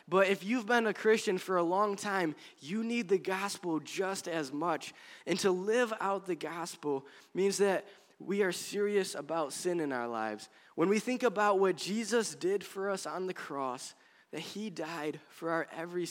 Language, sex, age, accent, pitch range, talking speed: English, male, 20-39, American, 135-185 Hz, 190 wpm